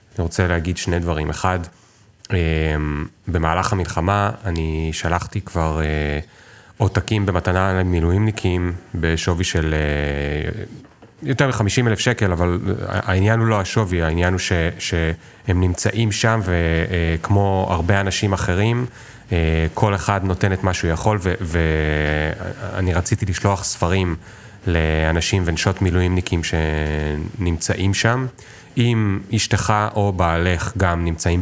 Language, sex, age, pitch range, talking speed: Hebrew, male, 30-49, 80-100 Hz, 110 wpm